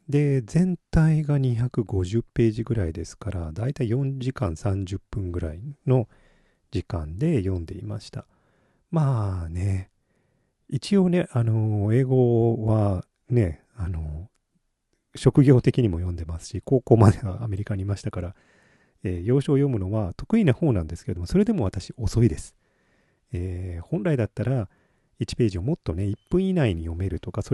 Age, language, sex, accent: 40-59, Japanese, male, native